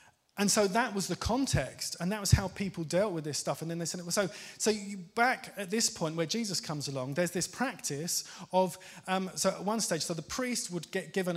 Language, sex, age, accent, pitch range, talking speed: English, male, 30-49, British, 155-195 Hz, 240 wpm